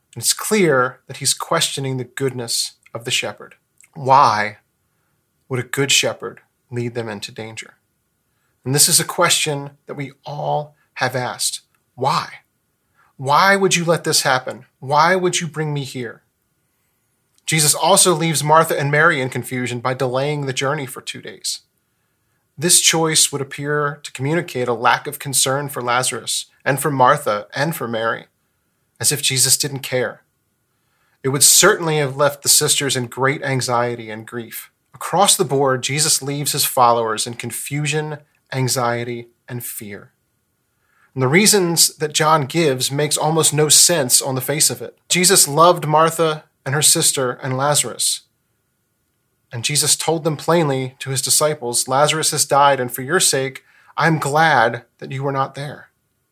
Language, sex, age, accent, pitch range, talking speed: English, male, 30-49, American, 125-155 Hz, 160 wpm